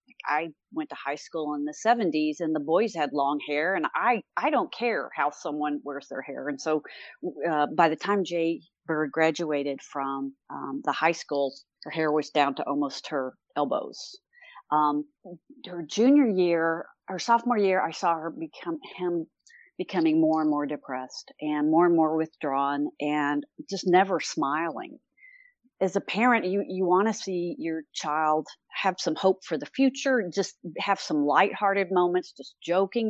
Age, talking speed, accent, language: 40-59, 170 wpm, American, English